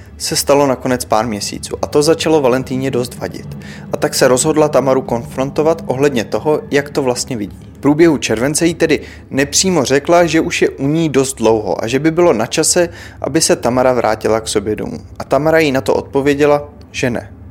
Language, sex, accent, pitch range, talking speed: Czech, male, native, 115-150 Hz, 200 wpm